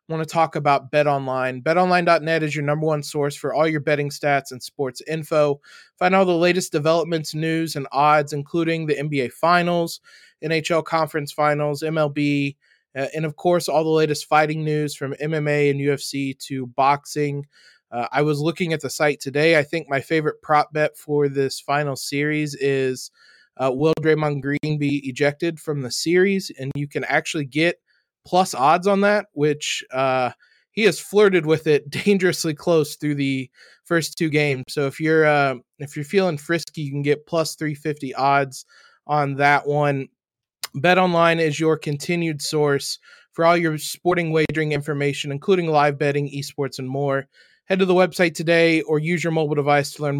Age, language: 20-39, English